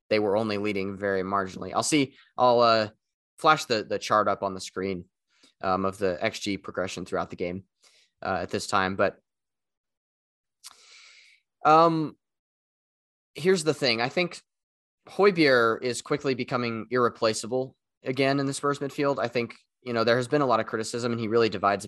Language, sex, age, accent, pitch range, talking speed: English, male, 20-39, American, 100-130 Hz, 170 wpm